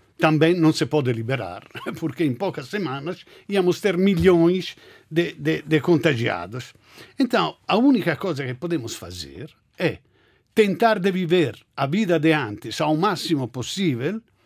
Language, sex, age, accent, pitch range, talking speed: Portuguese, male, 60-79, Italian, 155-220 Hz, 140 wpm